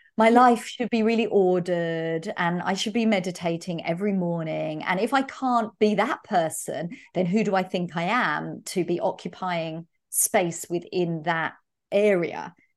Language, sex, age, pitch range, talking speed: English, female, 40-59, 175-225 Hz, 160 wpm